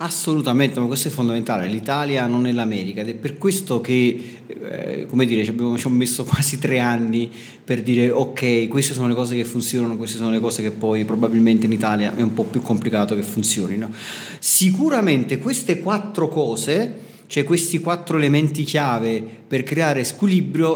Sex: male